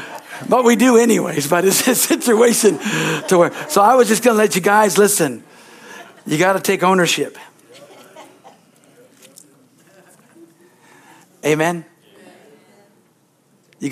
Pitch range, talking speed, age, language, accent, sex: 145-195 Hz, 115 wpm, 60-79, English, American, male